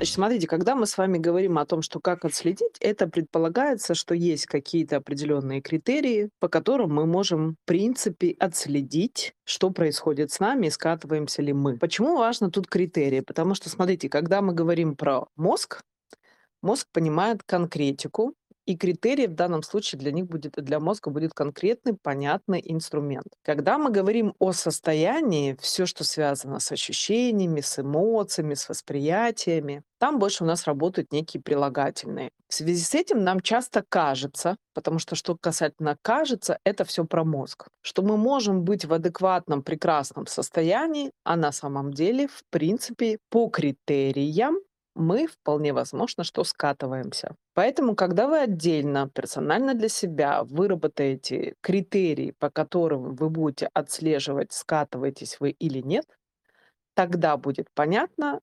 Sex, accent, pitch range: female, native, 150-195 Hz